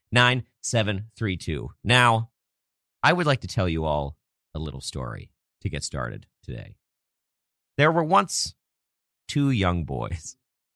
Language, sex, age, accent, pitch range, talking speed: English, male, 40-59, American, 75-110 Hz, 125 wpm